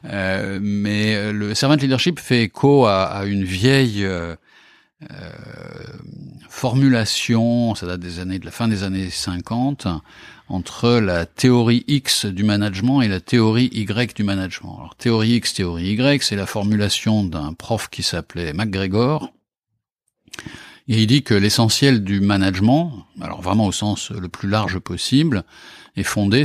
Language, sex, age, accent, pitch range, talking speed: French, male, 50-69, French, 95-125 Hz, 150 wpm